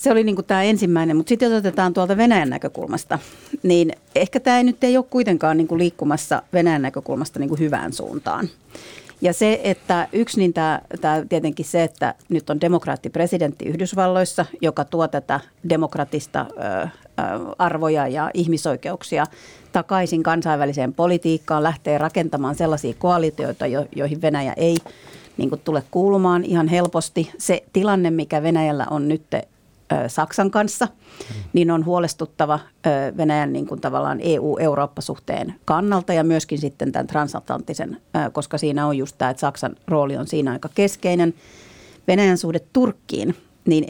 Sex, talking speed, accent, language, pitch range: female, 135 wpm, native, Finnish, 150-180 Hz